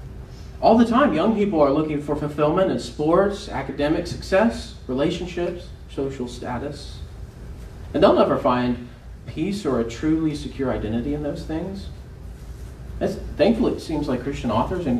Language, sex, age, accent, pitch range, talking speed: English, male, 30-49, American, 115-195 Hz, 145 wpm